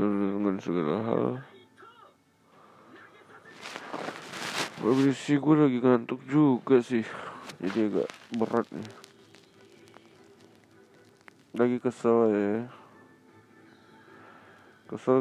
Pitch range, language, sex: 100-115 Hz, Indonesian, male